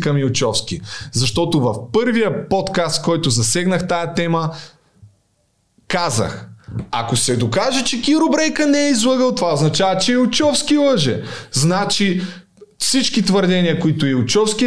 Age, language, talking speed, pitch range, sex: 20-39, Bulgarian, 120 wpm, 135-190 Hz, male